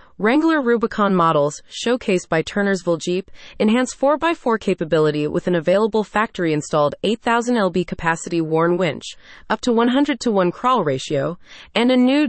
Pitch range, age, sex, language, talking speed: 170-235 Hz, 30-49, female, English, 140 wpm